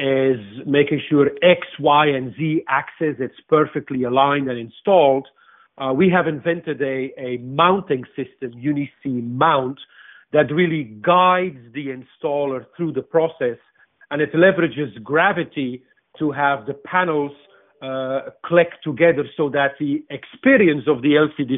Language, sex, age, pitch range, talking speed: English, male, 50-69, 135-170 Hz, 135 wpm